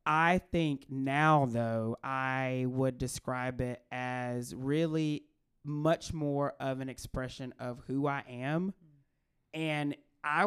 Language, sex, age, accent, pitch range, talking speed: English, male, 20-39, American, 130-150 Hz, 120 wpm